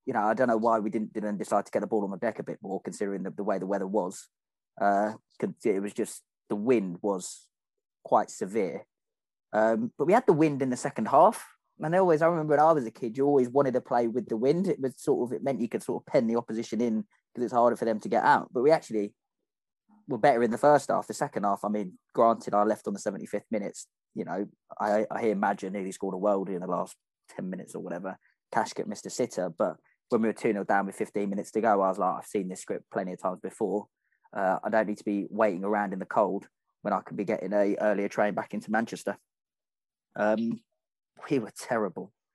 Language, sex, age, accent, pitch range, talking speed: English, male, 20-39, British, 105-130 Hz, 250 wpm